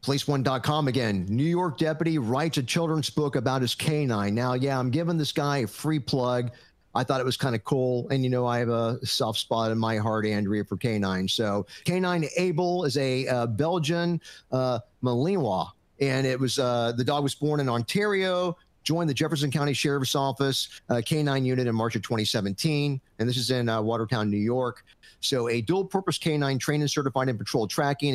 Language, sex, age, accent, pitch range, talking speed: English, male, 50-69, American, 120-150 Hz, 195 wpm